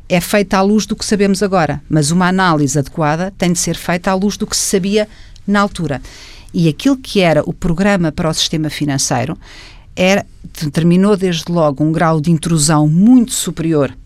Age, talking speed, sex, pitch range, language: 50-69, 185 wpm, female, 150-190 Hz, Portuguese